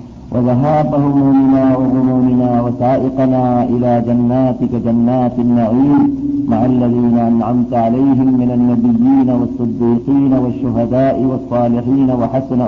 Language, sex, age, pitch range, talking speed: Malayalam, male, 50-69, 115-130 Hz, 80 wpm